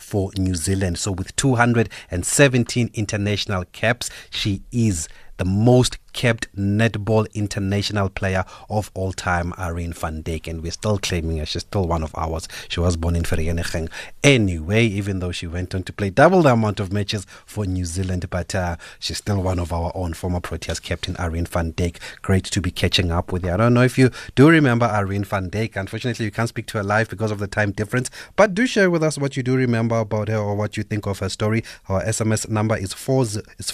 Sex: male